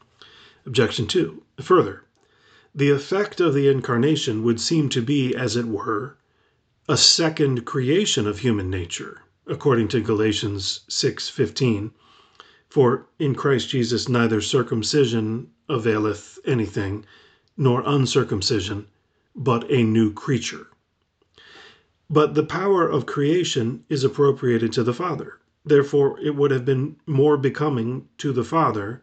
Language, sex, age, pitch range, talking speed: English, male, 40-59, 105-140 Hz, 120 wpm